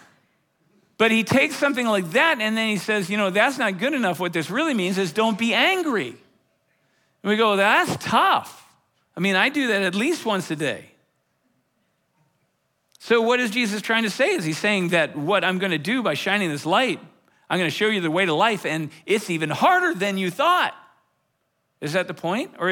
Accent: American